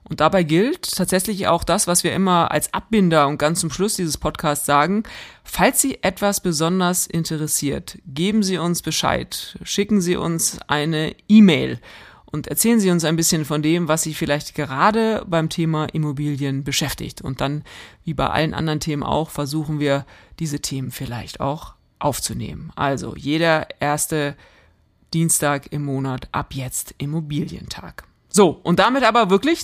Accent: German